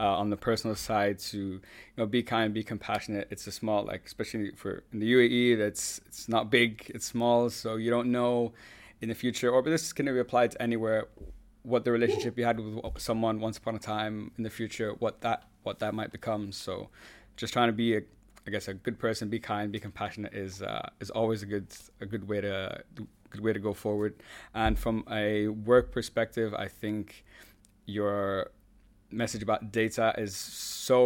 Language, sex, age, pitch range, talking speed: English, male, 20-39, 105-120 Hz, 205 wpm